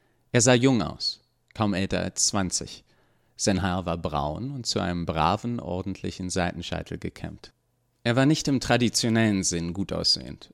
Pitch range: 95-120 Hz